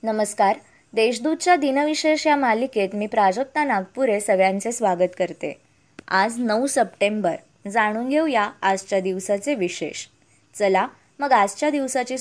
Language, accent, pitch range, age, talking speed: Marathi, native, 200-255 Hz, 20-39, 115 wpm